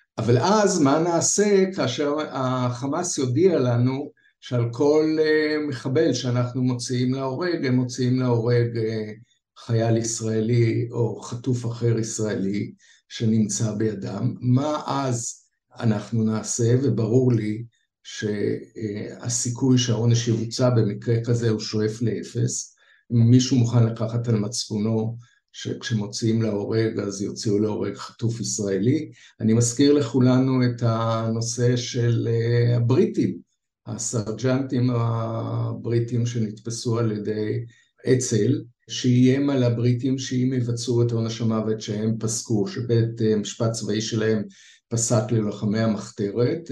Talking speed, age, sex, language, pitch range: 105 wpm, 60-79, male, Hebrew, 110-125 Hz